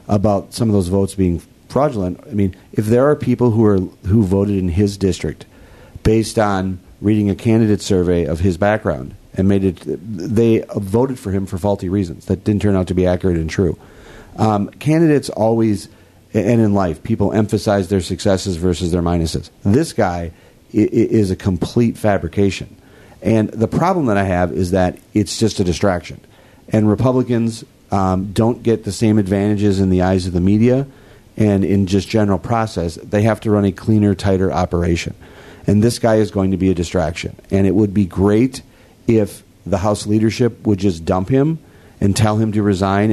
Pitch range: 95-110 Hz